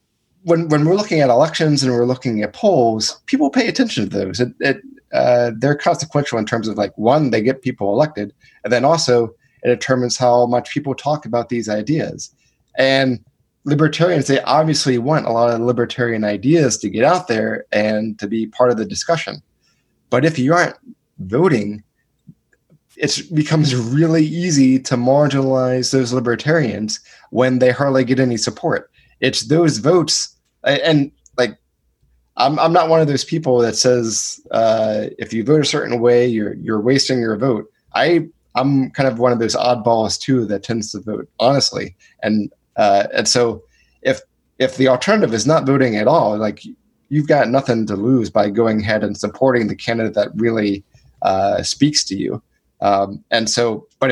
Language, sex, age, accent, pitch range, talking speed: English, male, 20-39, American, 110-145 Hz, 175 wpm